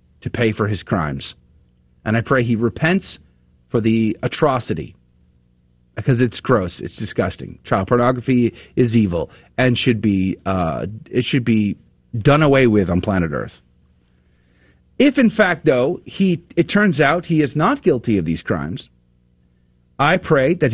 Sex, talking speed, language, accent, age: male, 155 wpm, English, American, 40-59